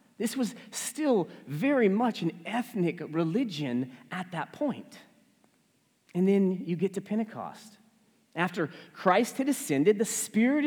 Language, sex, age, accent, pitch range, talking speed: English, male, 40-59, American, 185-265 Hz, 130 wpm